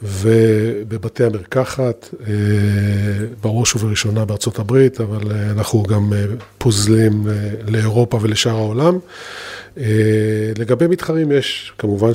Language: Hebrew